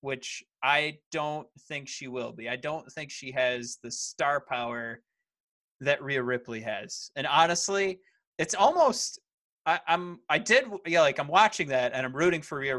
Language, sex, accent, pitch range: English, male, American, 135-200 Hz